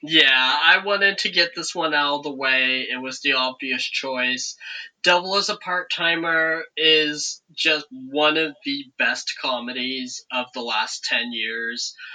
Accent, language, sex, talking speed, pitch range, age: American, English, male, 160 wpm, 125-180 Hz, 20-39